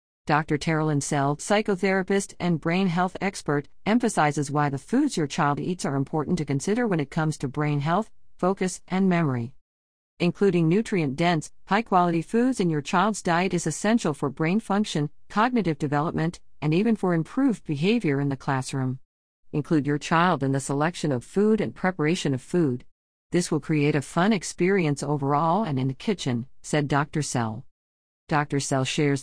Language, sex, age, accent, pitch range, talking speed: English, female, 50-69, American, 140-190 Hz, 165 wpm